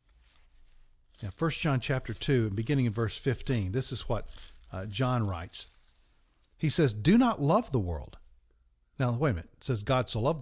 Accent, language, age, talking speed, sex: American, English, 50-69, 180 wpm, male